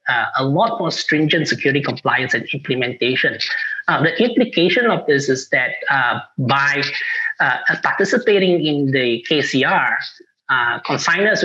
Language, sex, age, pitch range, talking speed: English, male, 20-39, 140-200 Hz, 130 wpm